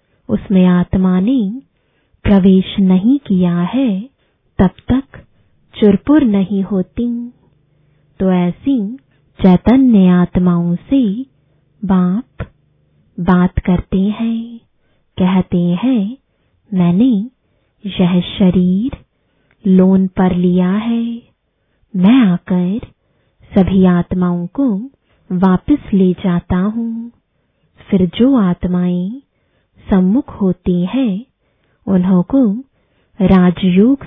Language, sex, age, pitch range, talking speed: English, female, 20-39, 185-230 Hz, 85 wpm